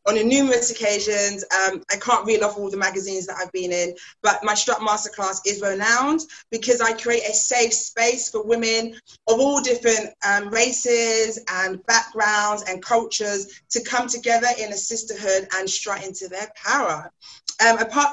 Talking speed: 170 wpm